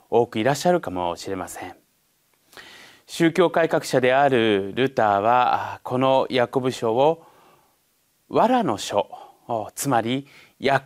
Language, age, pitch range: Japanese, 30-49, 125-200 Hz